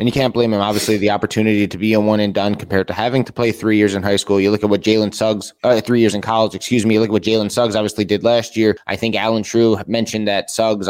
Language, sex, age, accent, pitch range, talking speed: English, male, 20-39, American, 105-125 Hz, 290 wpm